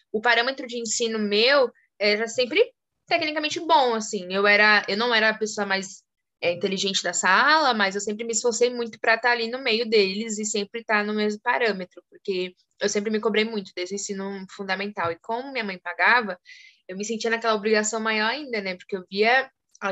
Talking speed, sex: 200 wpm, female